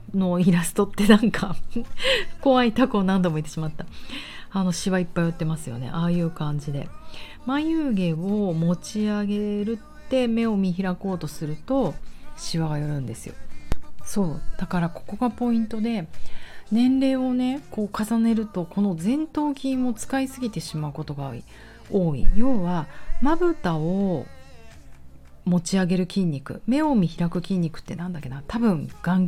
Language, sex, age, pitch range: Japanese, female, 40-59, 150-215 Hz